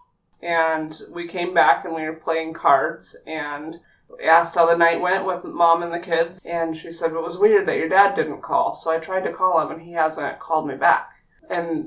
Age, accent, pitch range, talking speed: 20-39, American, 160-180 Hz, 220 wpm